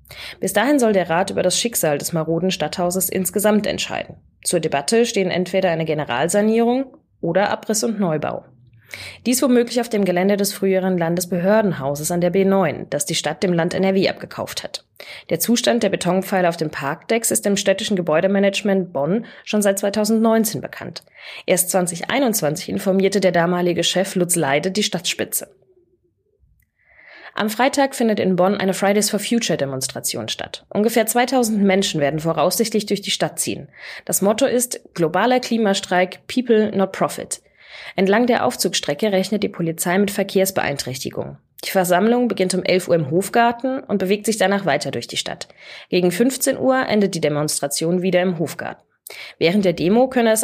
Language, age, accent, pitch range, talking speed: German, 20-39, German, 170-215 Hz, 155 wpm